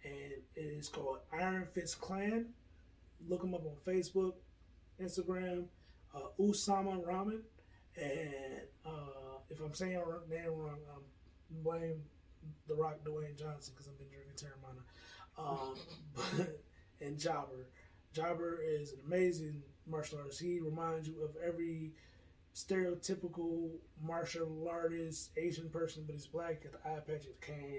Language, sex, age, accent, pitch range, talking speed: English, male, 20-39, American, 135-165 Hz, 135 wpm